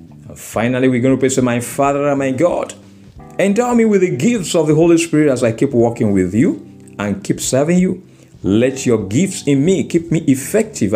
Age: 50-69